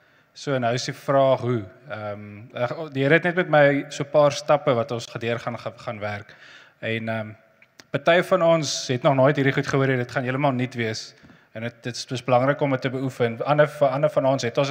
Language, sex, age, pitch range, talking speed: English, male, 20-39, 120-145 Hz, 215 wpm